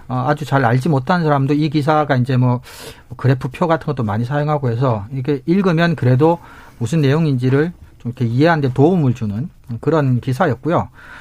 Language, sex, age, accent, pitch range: Korean, male, 40-59, native, 125-165 Hz